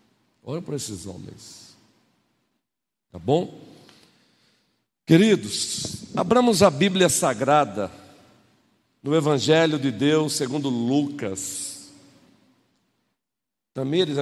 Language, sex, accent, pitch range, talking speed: Portuguese, male, Brazilian, 110-150 Hz, 75 wpm